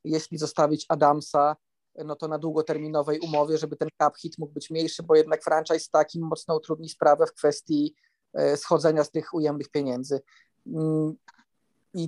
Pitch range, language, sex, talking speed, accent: 150-170 Hz, Polish, male, 150 wpm, native